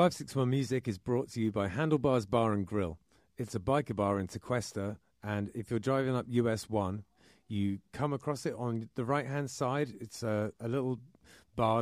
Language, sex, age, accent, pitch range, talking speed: English, male, 30-49, British, 105-125 Hz, 190 wpm